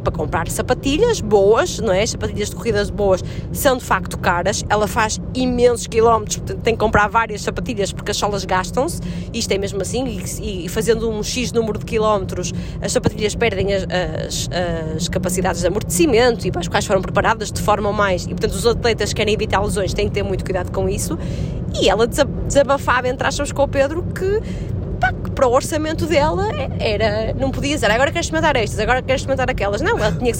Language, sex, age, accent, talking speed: Portuguese, female, 20-39, Brazilian, 195 wpm